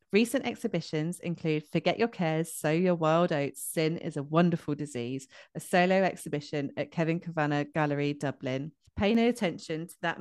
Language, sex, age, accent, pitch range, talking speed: English, female, 30-49, British, 150-180 Hz, 165 wpm